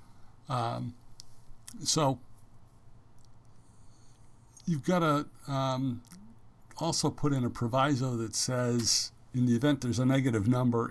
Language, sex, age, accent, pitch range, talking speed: English, male, 60-79, American, 110-130 Hz, 110 wpm